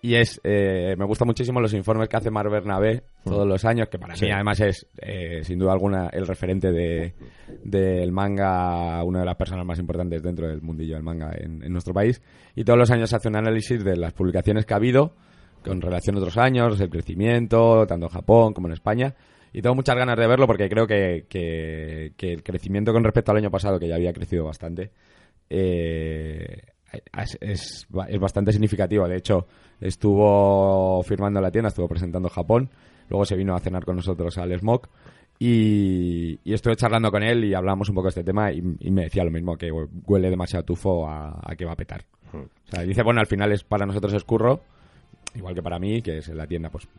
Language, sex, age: Spanish, male, 20-39